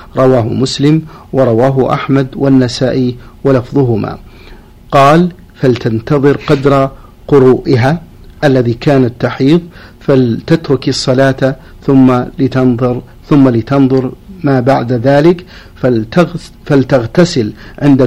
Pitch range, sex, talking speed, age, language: 125-145 Hz, male, 80 wpm, 50-69, Arabic